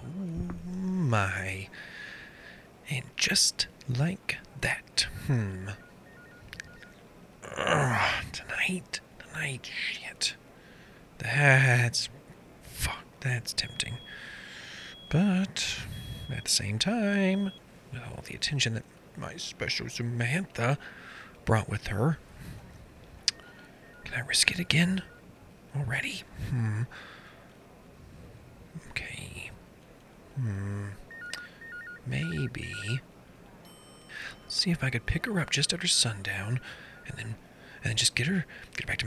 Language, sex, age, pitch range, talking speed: English, male, 40-59, 115-165 Hz, 95 wpm